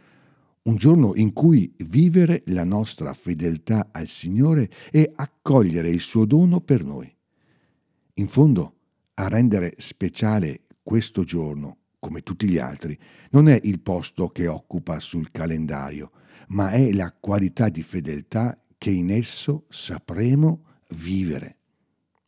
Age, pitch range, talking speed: 60-79, 90-130 Hz, 125 wpm